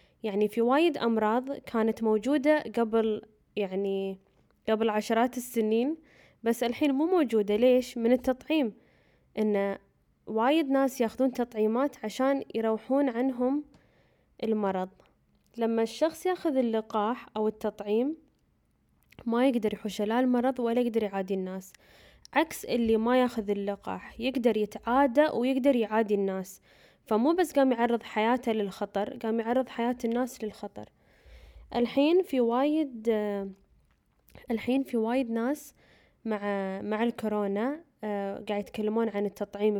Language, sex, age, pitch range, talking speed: Arabic, female, 10-29, 210-255 Hz, 120 wpm